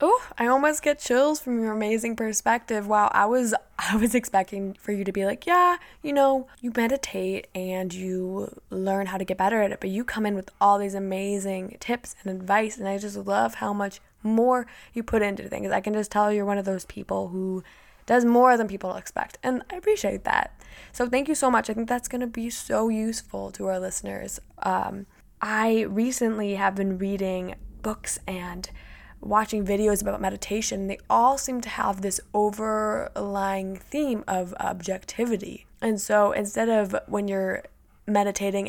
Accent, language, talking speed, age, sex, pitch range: American, English, 185 wpm, 10-29, female, 195-235 Hz